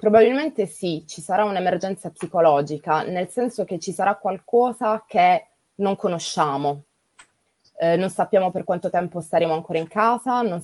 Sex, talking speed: female, 145 wpm